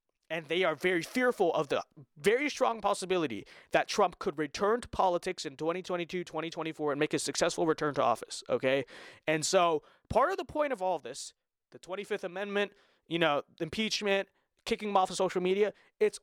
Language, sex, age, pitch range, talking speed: English, male, 20-39, 165-245 Hz, 190 wpm